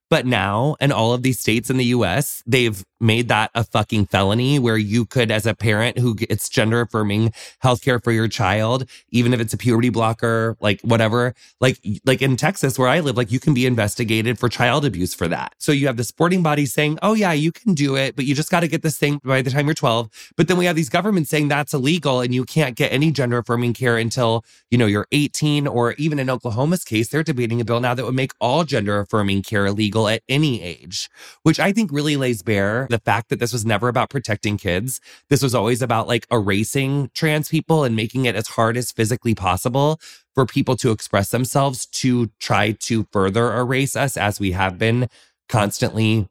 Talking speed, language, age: 220 wpm, English, 20-39